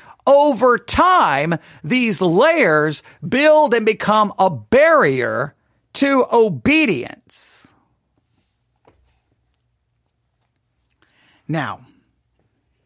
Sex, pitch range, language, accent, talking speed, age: male, 155-245 Hz, English, American, 55 wpm, 40-59